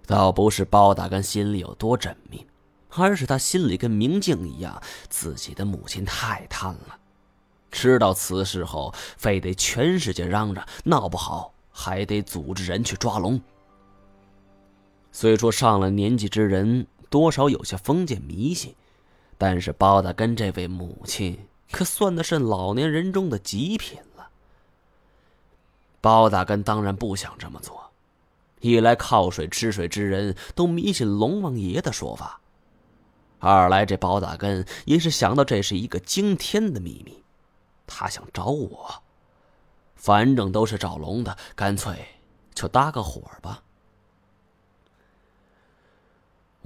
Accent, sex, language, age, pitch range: native, male, Chinese, 20-39, 95-125 Hz